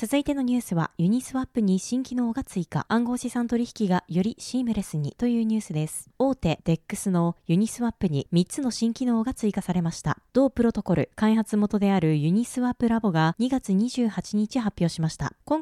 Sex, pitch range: female, 180-260 Hz